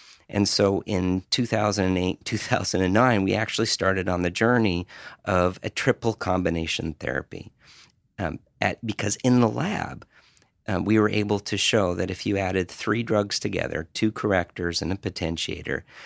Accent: American